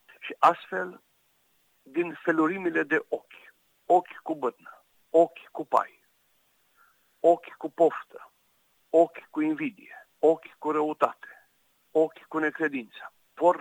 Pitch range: 130-175 Hz